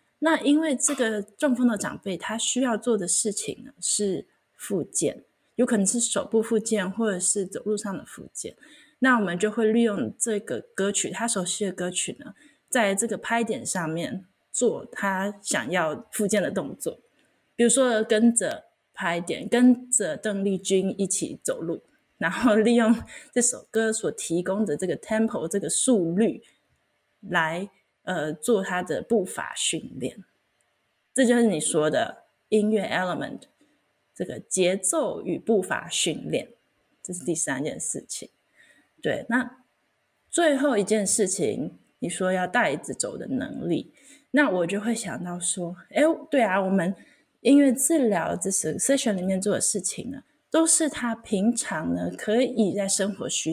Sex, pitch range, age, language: female, 190-245 Hz, 20-39, Chinese